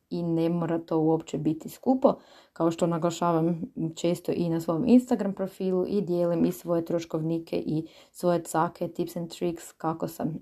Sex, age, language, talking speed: female, 20-39, Croatian, 165 wpm